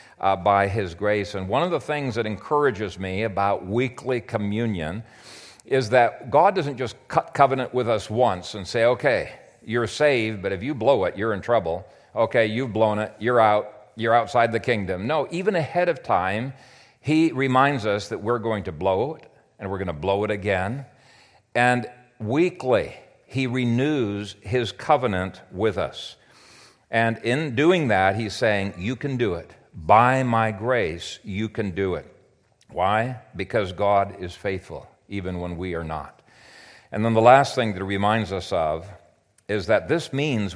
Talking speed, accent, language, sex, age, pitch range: 175 wpm, American, English, male, 50-69, 100-130 Hz